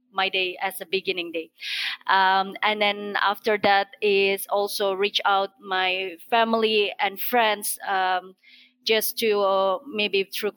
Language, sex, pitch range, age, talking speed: English, female, 190-215 Hz, 20-39, 140 wpm